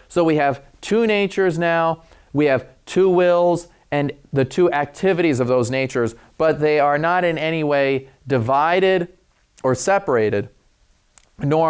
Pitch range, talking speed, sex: 130-175 Hz, 145 wpm, male